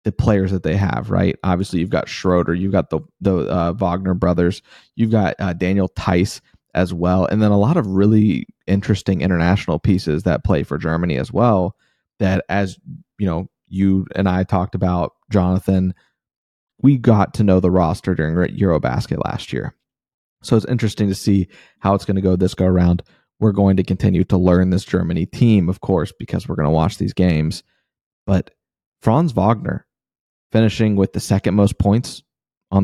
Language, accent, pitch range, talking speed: English, American, 90-105 Hz, 185 wpm